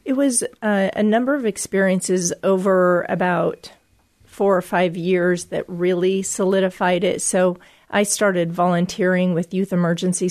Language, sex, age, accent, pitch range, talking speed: English, female, 40-59, American, 175-190 Hz, 140 wpm